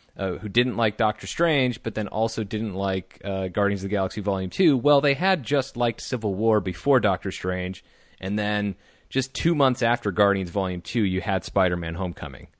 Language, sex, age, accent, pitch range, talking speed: English, male, 30-49, American, 95-115 Hz, 195 wpm